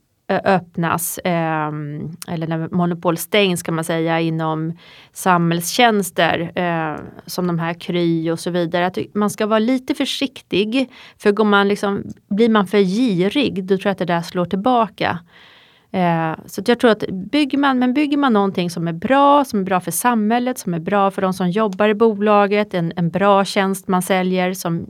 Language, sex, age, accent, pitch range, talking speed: Swedish, female, 30-49, native, 175-220 Hz, 170 wpm